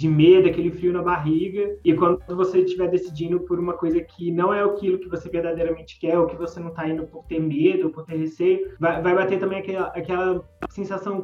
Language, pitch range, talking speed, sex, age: Portuguese, 155-185 Hz, 225 wpm, male, 20-39